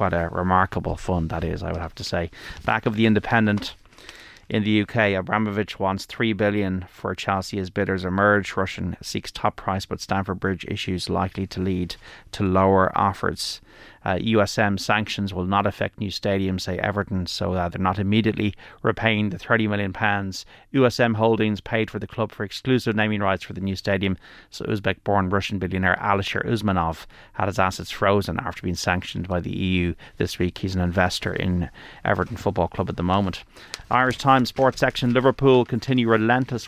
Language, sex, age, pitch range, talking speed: English, male, 30-49, 95-110 Hz, 175 wpm